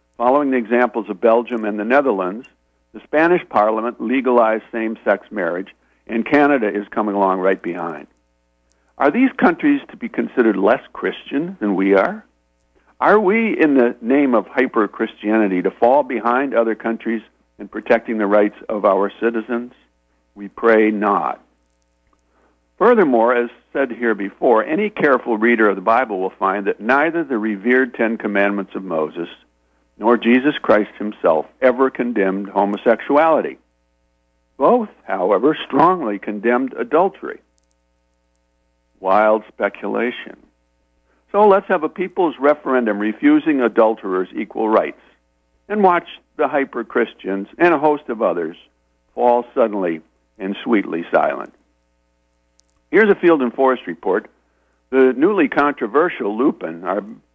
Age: 60-79